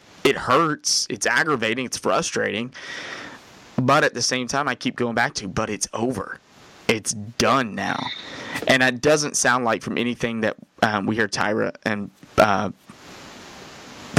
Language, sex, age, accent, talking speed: English, male, 20-39, American, 150 wpm